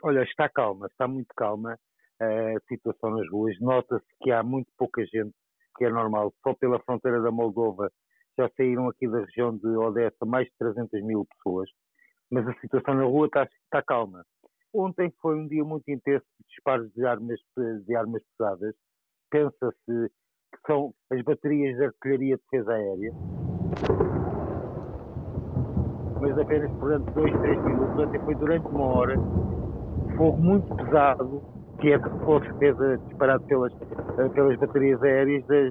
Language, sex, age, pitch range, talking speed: Portuguese, male, 50-69, 120-150 Hz, 150 wpm